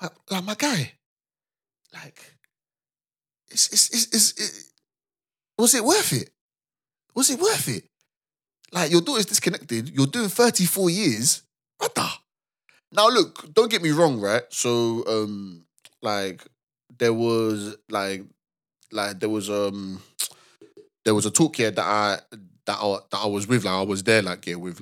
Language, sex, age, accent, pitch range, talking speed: English, male, 20-39, British, 100-145 Hz, 160 wpm